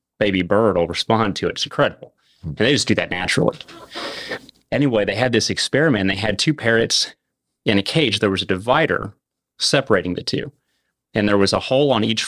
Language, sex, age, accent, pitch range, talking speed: English, male, 30-49, American, 100-130 Hz, 195 wpm